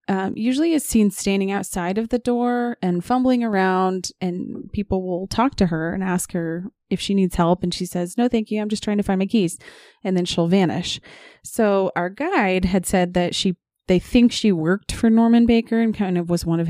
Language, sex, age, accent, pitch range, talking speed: English, female, 30-49, American, 175-210 Hz, 225 wpm